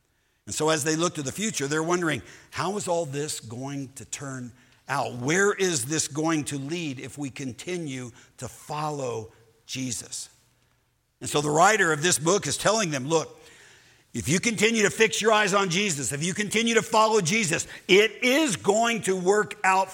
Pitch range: 140-200 Hz